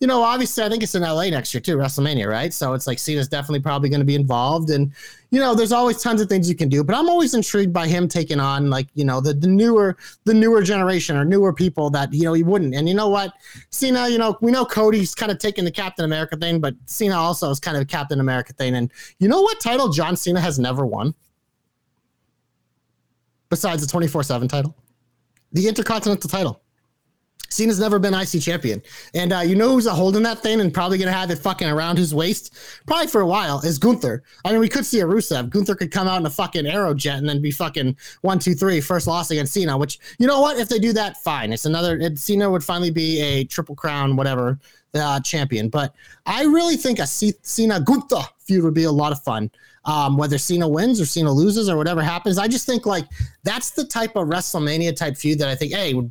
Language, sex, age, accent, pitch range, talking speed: English, male, 30-49, American, 145-205 Hz, 240 wpm